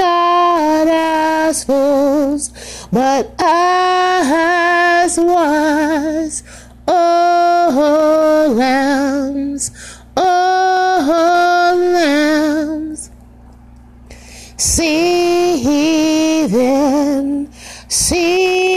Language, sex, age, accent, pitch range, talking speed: English, female, 30-49, American, 300-355 Hz, 50 wpm